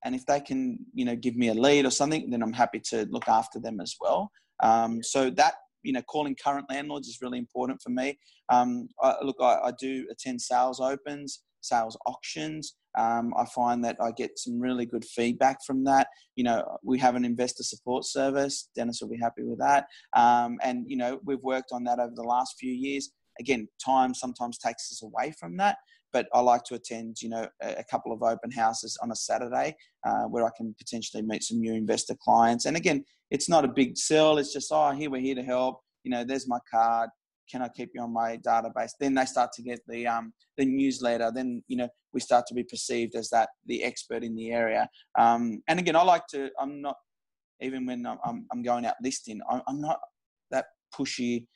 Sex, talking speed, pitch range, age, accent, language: male, 220 wpm, 120-135 Hz, 20-39, Australian, English